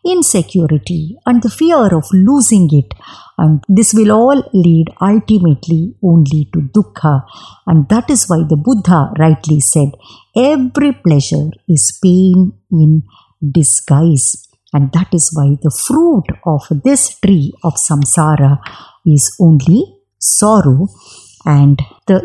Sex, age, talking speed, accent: male, 50-69, 125 wpm, Indian